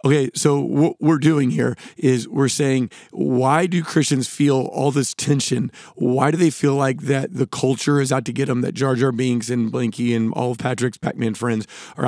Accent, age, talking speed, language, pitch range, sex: American, 40-59, 210 wpm, English, 125-150 Hz, male